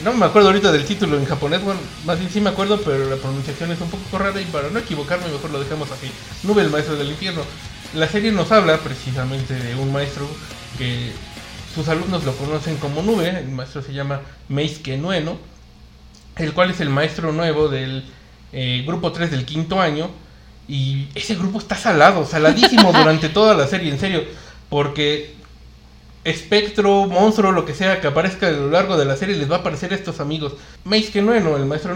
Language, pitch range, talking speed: Spanish, 140-185 Hz, 195 wpm